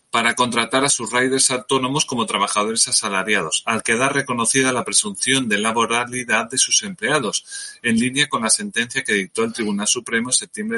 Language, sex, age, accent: Spanish, male, 30-49, Spanish